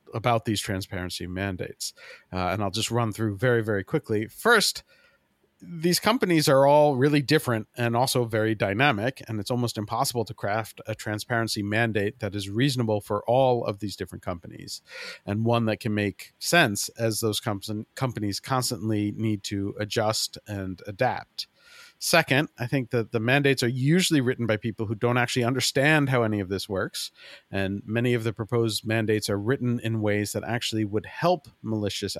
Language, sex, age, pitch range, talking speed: English, male, 40-59, 100-125 Hz, 170 wpm